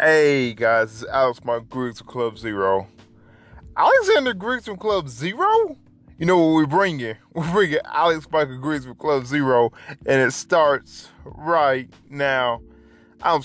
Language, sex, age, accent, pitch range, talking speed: English, male, 20-39, American, 110-140 Hz, 160 wpm